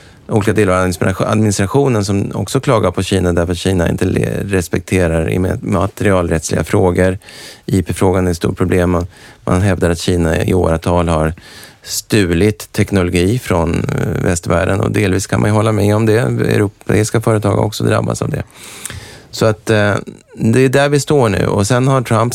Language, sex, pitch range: English, male, 90-110 Hz